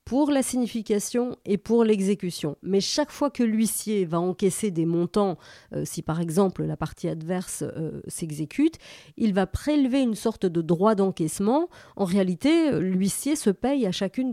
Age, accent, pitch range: 40-59, French, 175-220 Hz